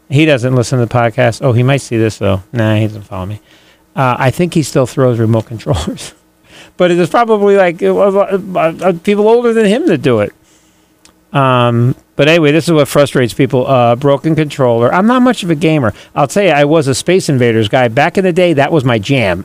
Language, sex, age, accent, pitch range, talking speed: English, male, 40-59, American, 120-175 Hz, 230 wpm